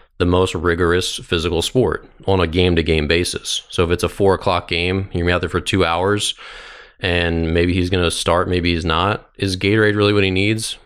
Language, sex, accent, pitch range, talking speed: English, male, American, 85-95 Hz, 215 wpm